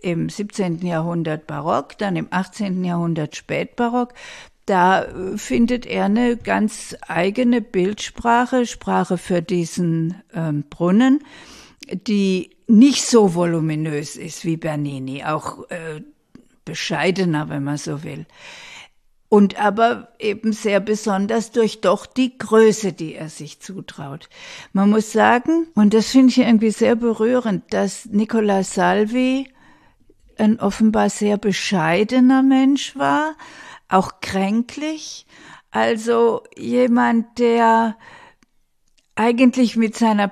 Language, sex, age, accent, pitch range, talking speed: German, female, 50-69, German, 180-245 Hz, 110 wpm